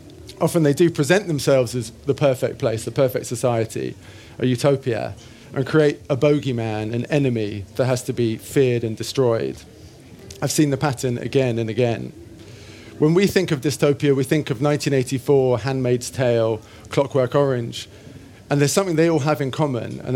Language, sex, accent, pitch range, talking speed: English, male, British, 115-145 Hz, 165 wpm